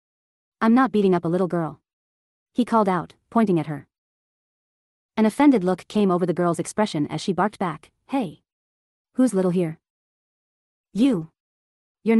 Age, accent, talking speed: 30-49, American, 150 wpm